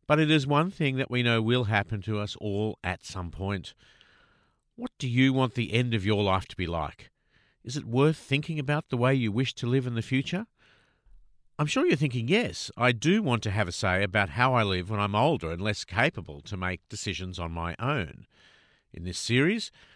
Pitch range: 100-130 Hz